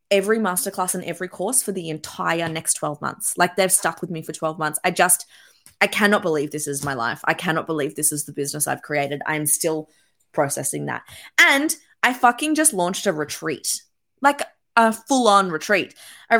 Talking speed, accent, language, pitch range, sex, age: 200 wpm, Australian, English, 160-220 Hz, female, 20-39